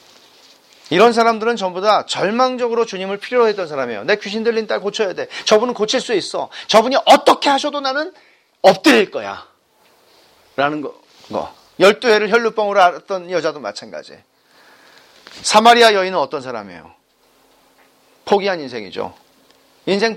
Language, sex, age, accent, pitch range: Korean, male, 40-59, native, 185-245 Hz